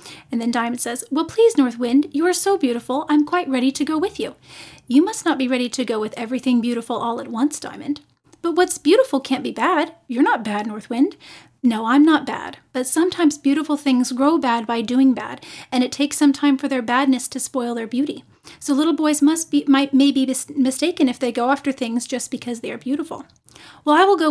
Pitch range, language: 250-300 Hz, English